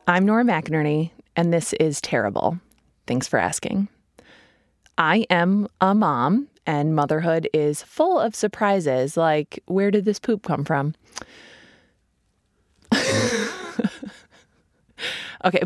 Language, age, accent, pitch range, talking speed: English, 20-39, American, 145-205 Hz, 105 wpm